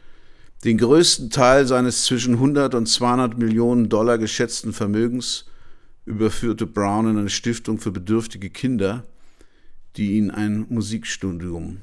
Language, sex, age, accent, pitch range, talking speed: German, male, 50-69, German, 100-120 Hz, 120 wpm